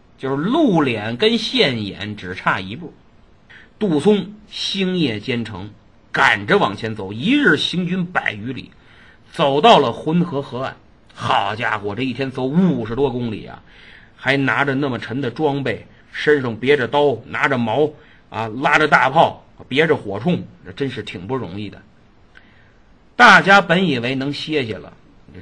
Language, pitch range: Chinese, 120-195 Hz